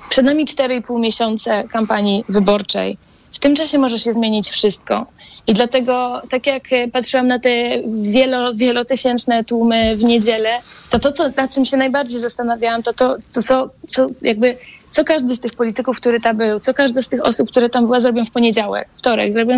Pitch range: 230-260 Hz